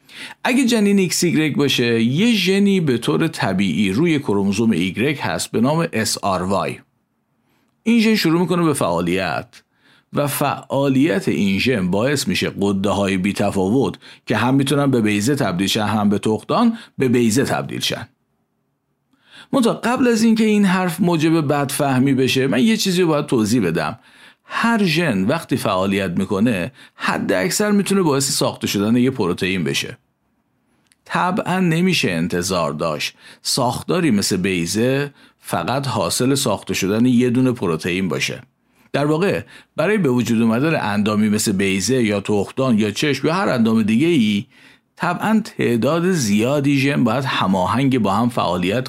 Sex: male